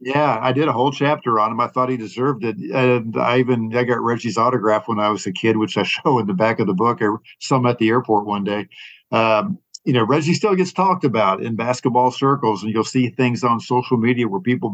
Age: 50-69